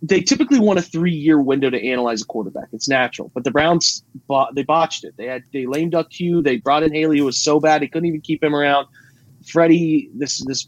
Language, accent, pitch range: English, American, 135-160 Hz